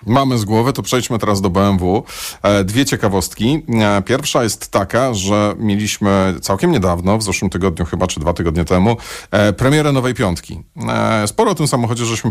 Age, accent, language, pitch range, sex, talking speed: 40-59, native, Polish, 95-130 Hz, male, 160 wpm